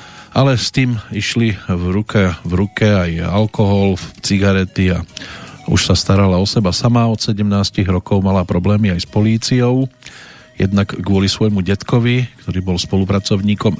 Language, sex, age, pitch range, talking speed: Slovak, male, 40-59, 95-120 Hz, 145 wpm